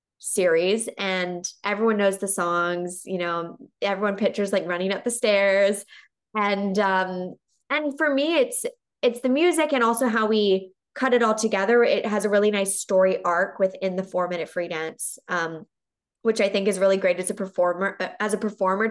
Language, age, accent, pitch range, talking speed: English, 20-39, American, 185-215 Hz, 180 wpm